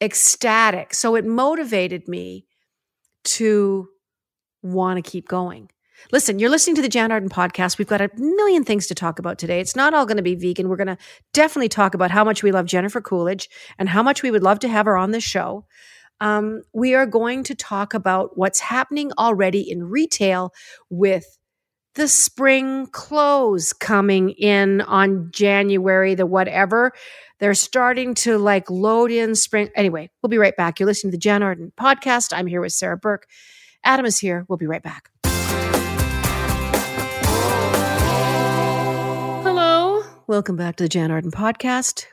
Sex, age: female, 50-69